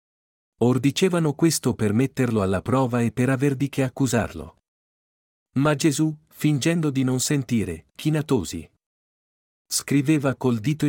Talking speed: 125 wpm